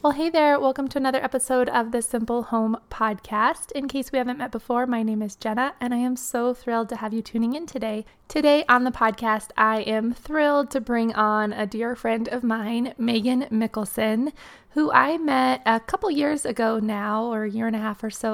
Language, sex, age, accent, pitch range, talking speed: English, female, 20-39, American, 215-250 Hz, 215 wpm